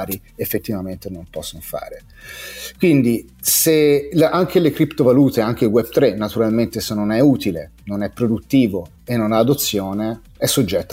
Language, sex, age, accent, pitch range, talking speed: Italian, male, 30-49, native, 105-130 Hz, 150 wpm